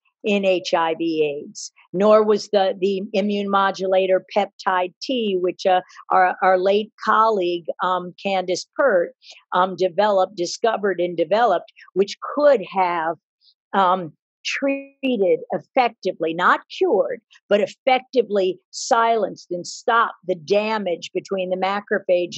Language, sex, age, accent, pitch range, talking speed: English, female, 50-69, American, 190-240 Hz, 115 wpm